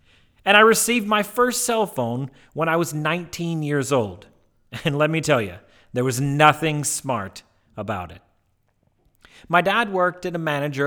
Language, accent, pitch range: English, American, 110-155 Hz